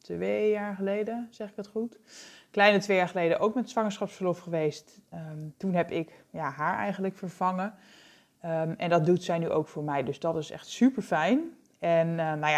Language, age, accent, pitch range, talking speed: English, 20-39, Dutch, 165-205 Hz, 170 wpm